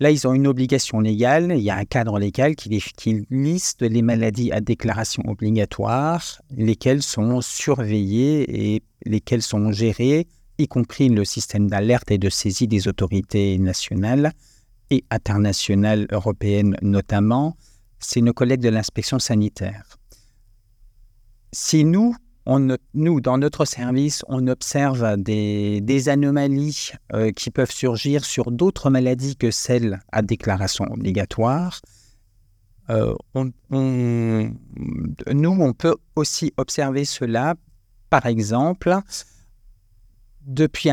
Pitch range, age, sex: 105-140 Hz, 50-69, male